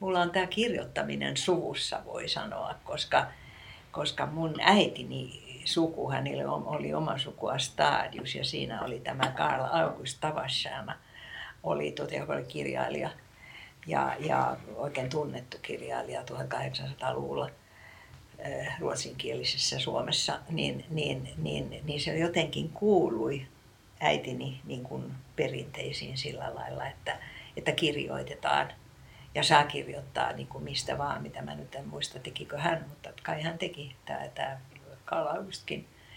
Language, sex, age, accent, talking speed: Finnish, female, 50-69, native, 115 wpm